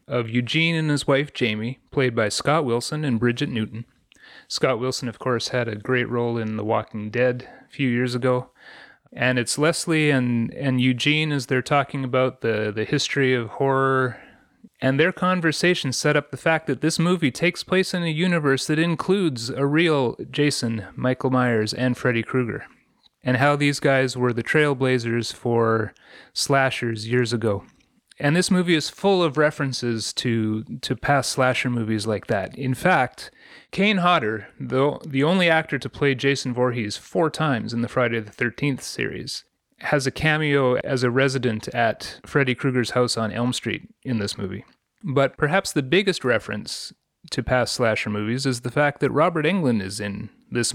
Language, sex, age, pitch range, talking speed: English, male, 30-49, 120-145 Hz, 175 wpm